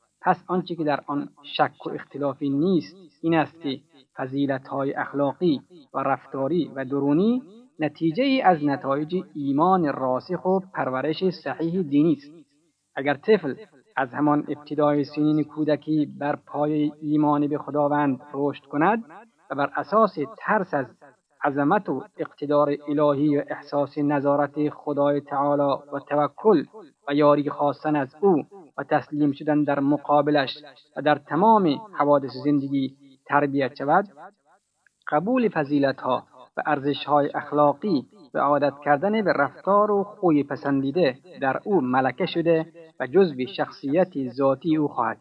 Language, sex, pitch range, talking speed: Persian, male, 140-160 Hz, 130 wpm